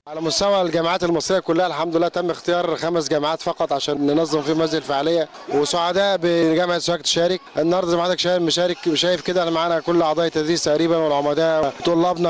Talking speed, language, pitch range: 175 wpm, Arabic, 145-180 Hz